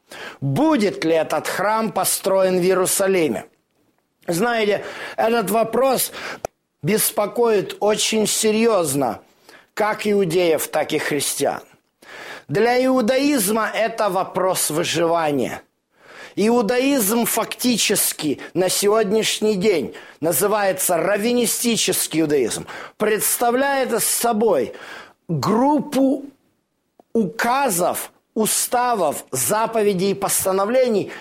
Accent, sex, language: native, male, Russian